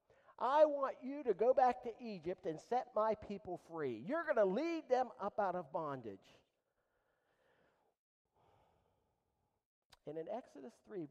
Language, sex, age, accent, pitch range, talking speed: English, male, 50-69, American, 130-210 Hz, 140 wpm